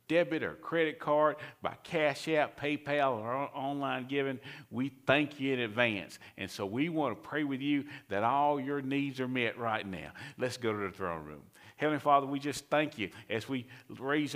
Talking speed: 195 wpm